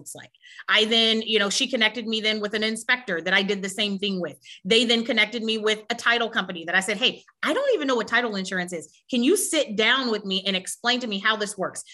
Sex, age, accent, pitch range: female, 30-49, American, 195-275 Hz